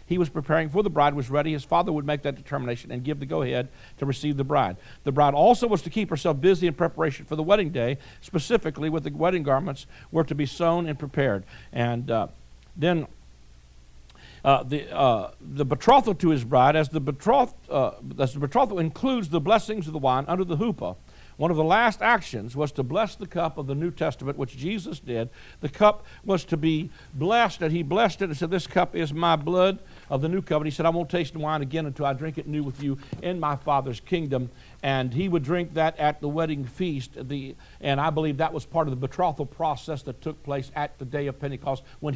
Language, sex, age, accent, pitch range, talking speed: English, male, 60-79, American, 130-165 Hz, 230 wpm